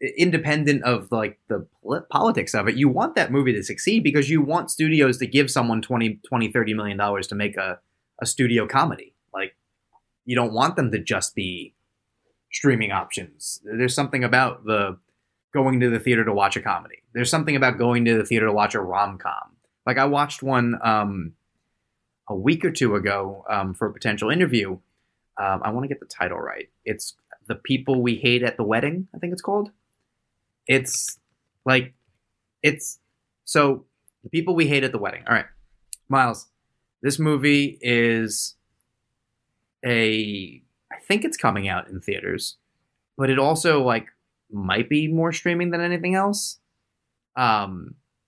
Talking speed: 170 wpm